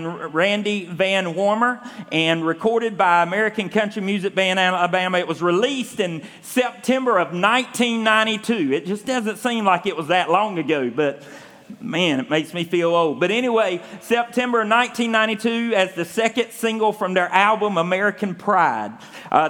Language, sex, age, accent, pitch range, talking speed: English, male, 40-59, American, 175-225 Hz, 150 wpm